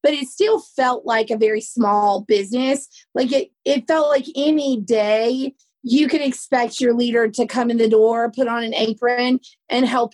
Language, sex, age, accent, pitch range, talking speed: English, female, 30-49, American, 230-280 Hz, 190 wpm